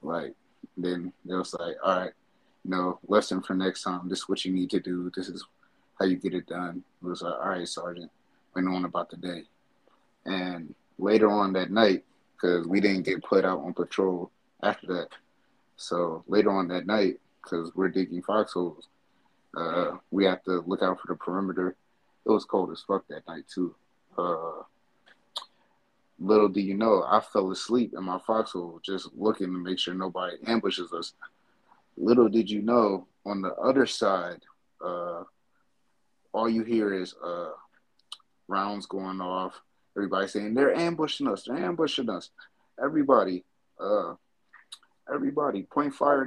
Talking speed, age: 165 wpm, 30-49